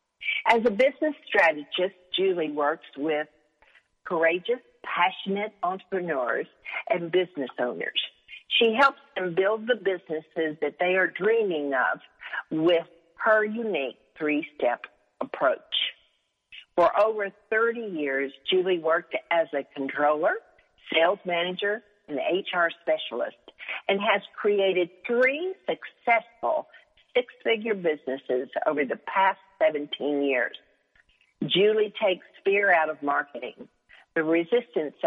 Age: 50-69